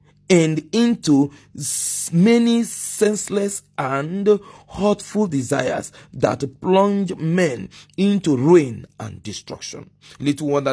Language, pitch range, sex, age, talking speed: English, 145-195 Hz, male, 40-59, 90 wpm